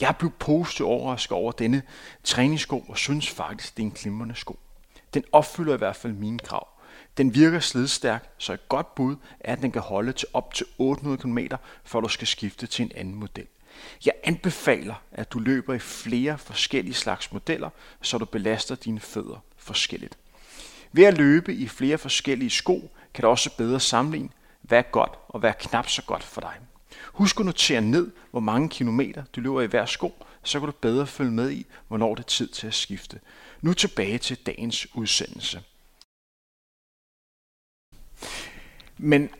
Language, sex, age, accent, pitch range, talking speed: Danish, male, 30-49, native, 115-145 Hz, 180 wpm